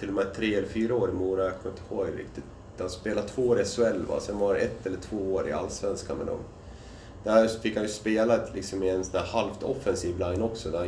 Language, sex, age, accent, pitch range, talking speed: Swedish, male, 30-49, native, 95-115 Hz, 235 wpm